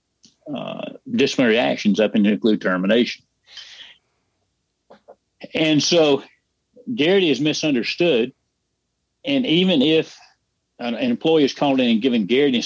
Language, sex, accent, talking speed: English, male, American, 120 wpm